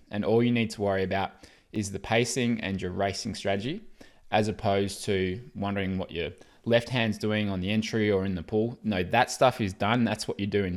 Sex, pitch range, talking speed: male, 100-115 Hz, 225 wpm